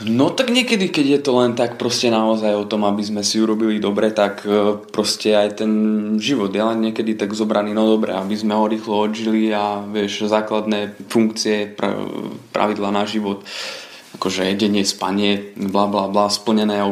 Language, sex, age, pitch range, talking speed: Slovak, male, 20-39, 100-110 Hz, 170 wpm